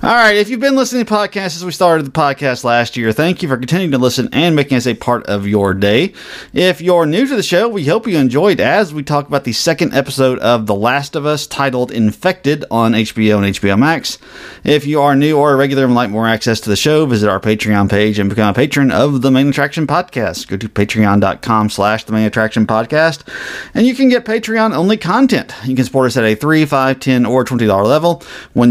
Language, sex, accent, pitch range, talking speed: English, male, American, 110-170 Hz, 230 wpm